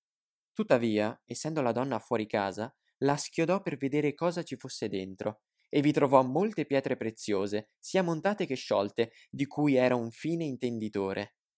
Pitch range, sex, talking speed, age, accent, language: 110-150 Hz, male, 155 wpm, 20-39, native, Italian